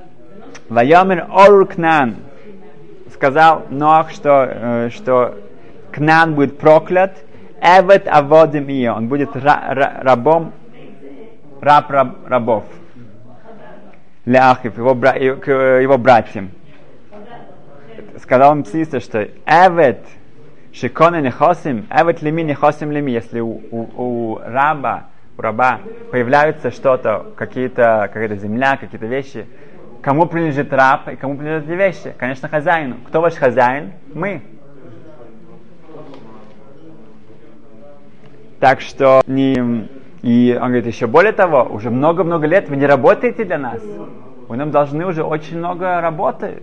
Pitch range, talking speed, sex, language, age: 125-155 Hz, 90 wpm, male, Russian, 30-49